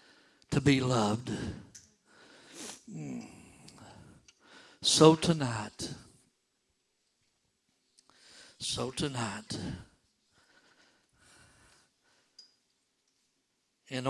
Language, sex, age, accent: English, male, 60-79, American